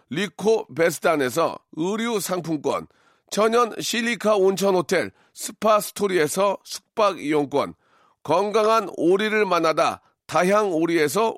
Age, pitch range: 40-59, 175-225 Hz